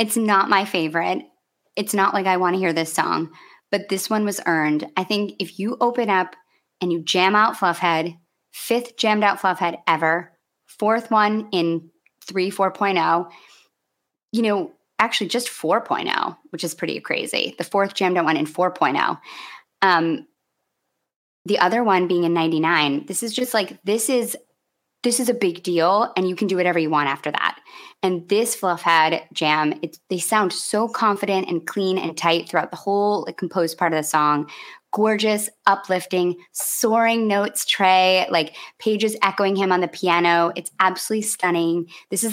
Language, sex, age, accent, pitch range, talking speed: English, female, 20-39, American, 170-215 Hz, 165 wpm